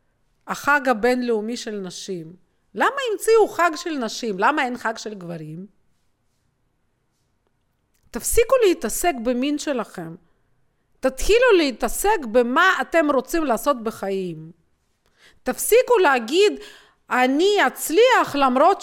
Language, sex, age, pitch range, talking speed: Hebrew, female, 40-59, 235-365 Hz, 95 wpm